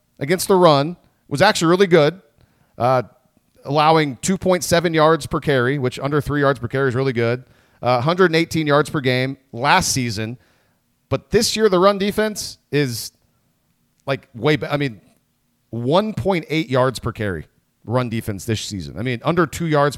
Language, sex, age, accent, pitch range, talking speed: English, male, 40-59, American, 130-185 Hz, 160 wpm